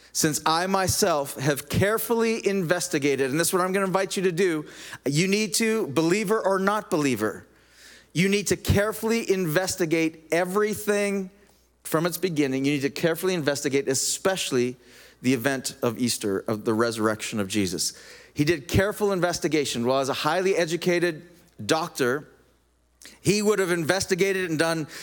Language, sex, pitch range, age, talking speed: English, male, 145-190 Hz, 40-59, 155 wpm